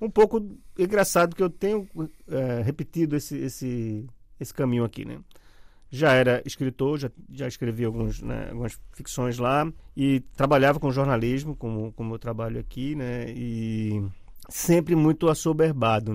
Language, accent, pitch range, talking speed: Portuguese, Brazilian, 120-145 Hz, 145 wpm